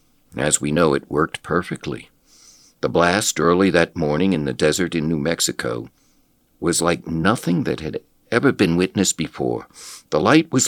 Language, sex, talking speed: English, male, 165 wpm